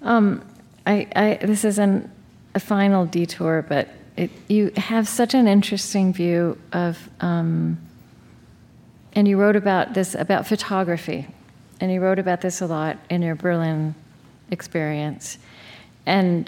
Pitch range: 160-205 Hz